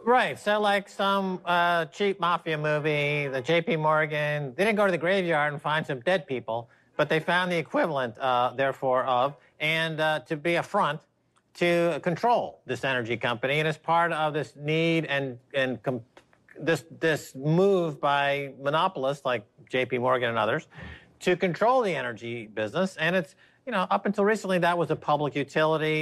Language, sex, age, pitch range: English, male, 50-69, 135-170 Hz